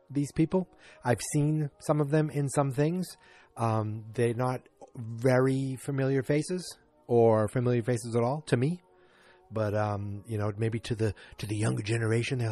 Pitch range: 105-145 Hz